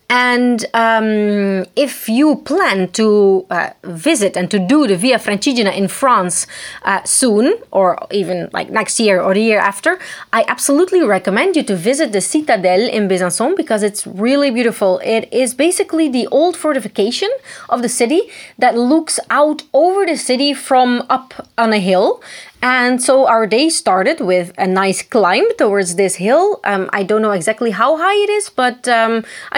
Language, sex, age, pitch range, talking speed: Italian, female, 30-49, 200-280 Hz, 170 wpm